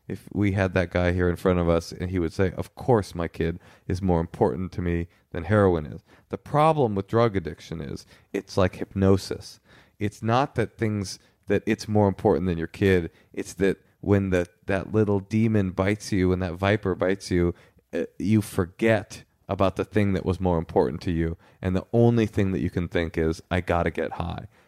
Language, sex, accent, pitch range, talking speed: English, male, American, 90-105 Hz, 205 wpm